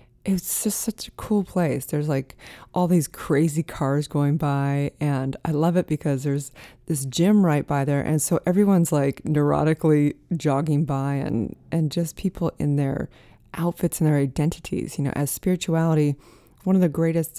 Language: English